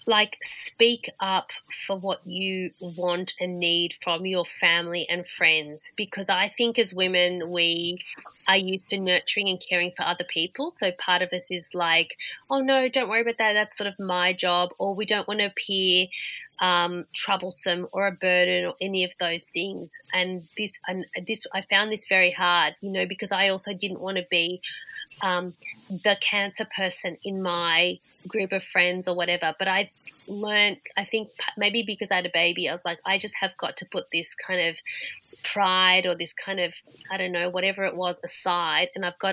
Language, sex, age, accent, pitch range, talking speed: English, female, 30-49, Australian, 175-200 Hz, 195 wpm